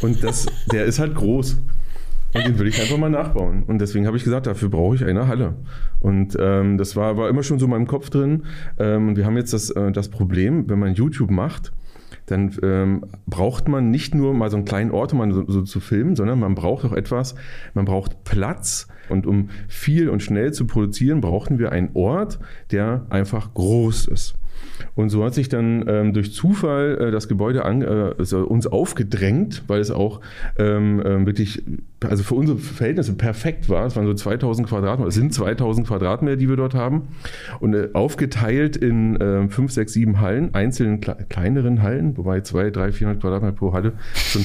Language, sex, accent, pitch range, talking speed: German, male, German, 100-130 Hz, 200 wpm